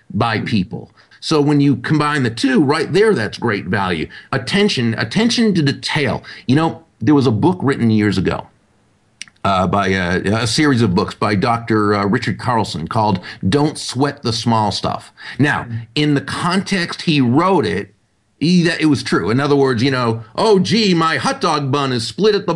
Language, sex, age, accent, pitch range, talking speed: English, male, 40-59, American, 120-160 Hz, 190 wpm